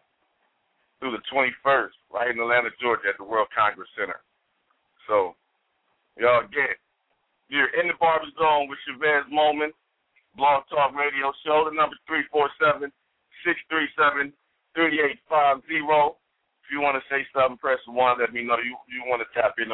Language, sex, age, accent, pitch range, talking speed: English, male, 50-69, American, 120-145 Hz, 175 wpm